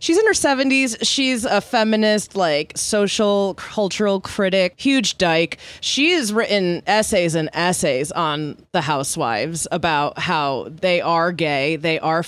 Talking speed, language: 140 wpm, English